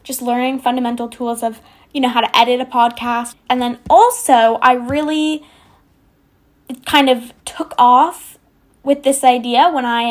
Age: 10-29